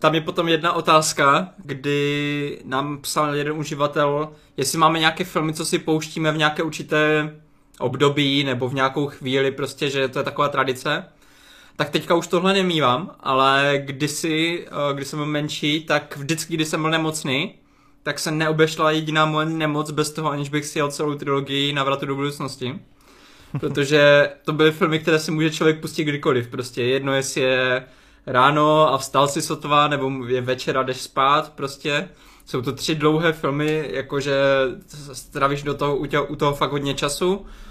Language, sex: Czech, male